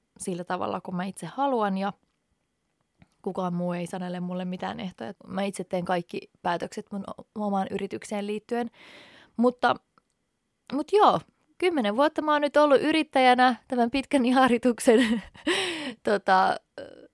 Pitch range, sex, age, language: 180-230 Hz, female, 20-39, Finnish